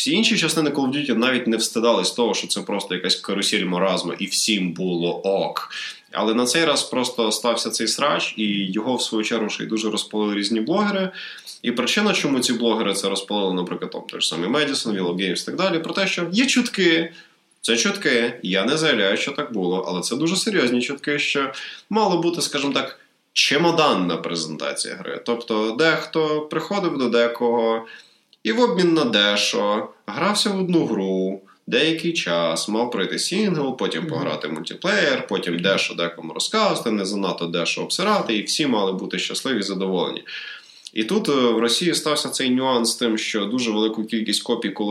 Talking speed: 175 wpm